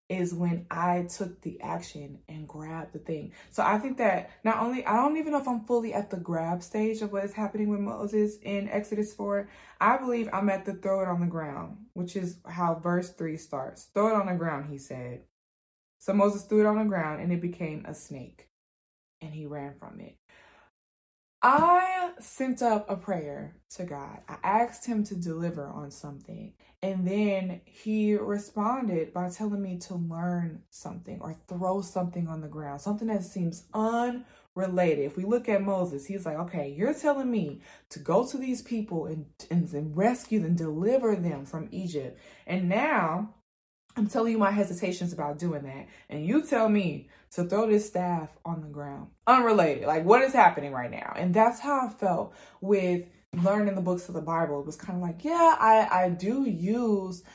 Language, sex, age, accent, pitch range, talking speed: English, female, 20-39, American, 170-215 Hz, 195 wpm